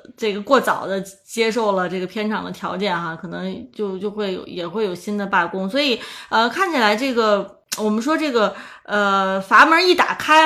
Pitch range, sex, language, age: 195-270 Hz, female, Chinese, 20-39